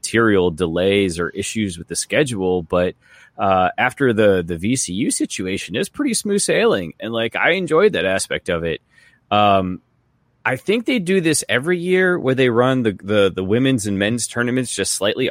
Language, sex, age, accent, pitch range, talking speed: English, male, 30-49, American, 95-135 Hz, 180 wpm